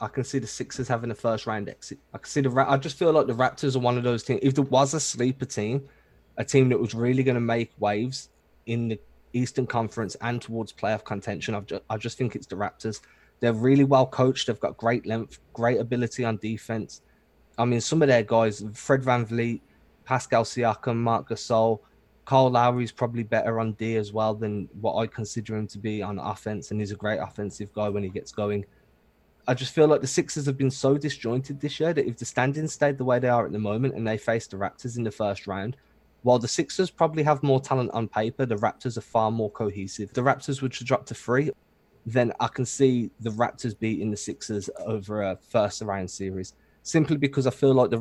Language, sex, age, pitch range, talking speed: English, male, 20-39, 110-130 Hz, 230 wpm